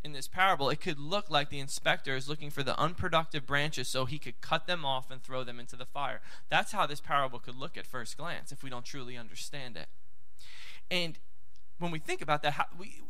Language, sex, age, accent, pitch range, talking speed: English, male, 20-39, American, 145-190 Hz, 225 wpm